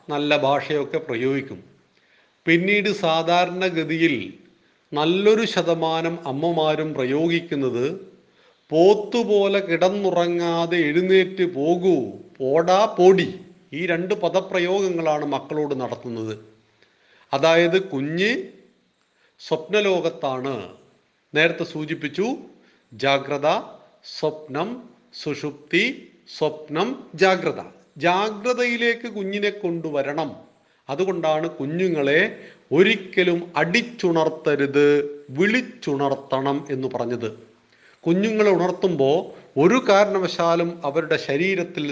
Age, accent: 40-59, native